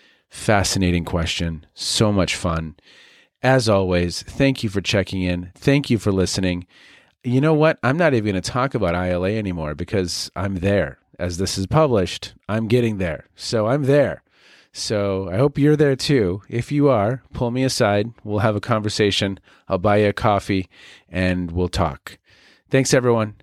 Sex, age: male, 40-59